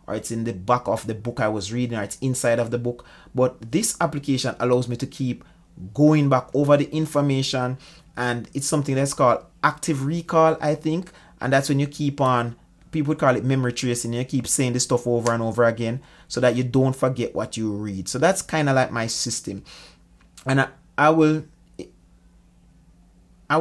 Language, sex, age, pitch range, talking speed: English, male, 30-49, 120-155 Hz, 200 wpm